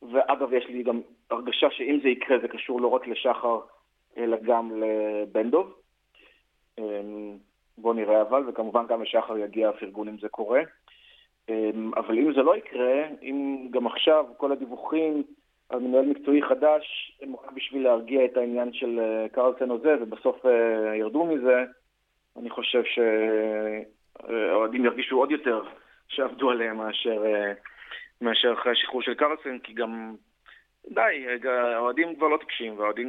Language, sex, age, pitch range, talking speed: Hebrew, male, 30-49, 110-135 Hz, 140 wpm